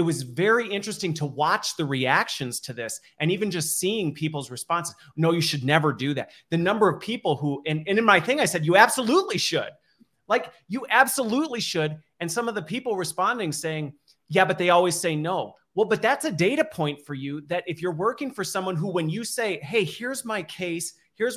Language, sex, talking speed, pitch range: English, male, 215 wpm, 145-195 Hz